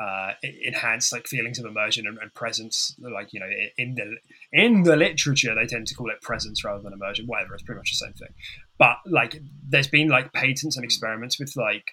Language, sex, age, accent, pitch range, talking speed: English, male, 20-39, British, 115-150 Hz, 215 wpm